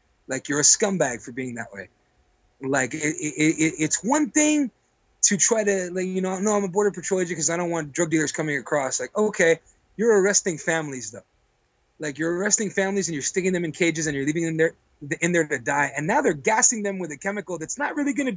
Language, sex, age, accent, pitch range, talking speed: English, male, 30-49, American, 145-195 Hz, 240 wpm